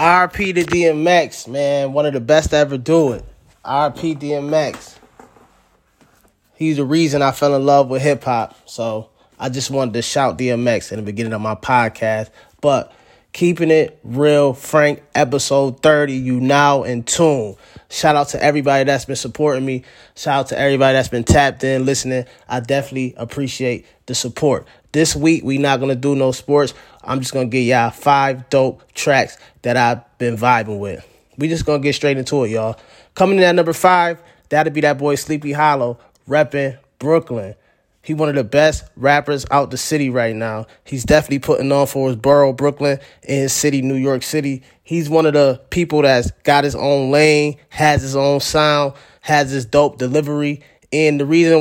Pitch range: 130-150 Hz